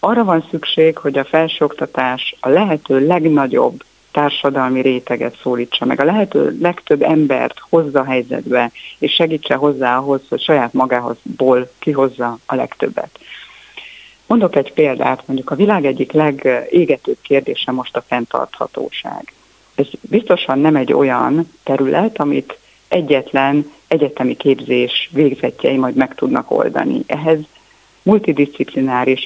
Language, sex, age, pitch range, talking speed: Hungarian, female, 60-79, 130-160 Hz, 120 wpm